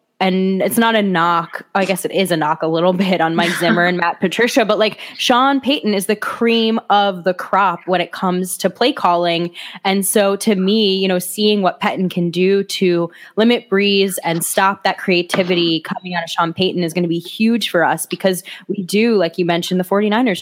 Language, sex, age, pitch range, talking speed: English, female, 10-29, 165-195 Hz, 215 wpm